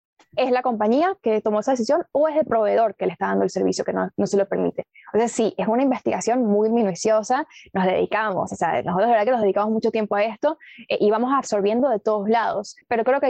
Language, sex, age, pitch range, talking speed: Spanish, female, 10-29, 210-265 Hz, 250 wpm